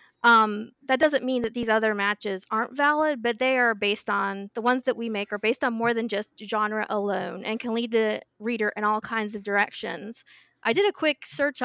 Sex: female